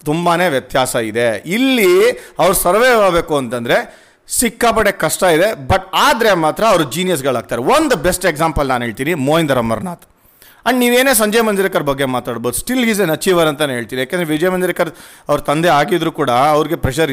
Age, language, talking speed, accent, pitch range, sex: 40-59, Kannada, 160 wpm, native, 140-180 Hz, male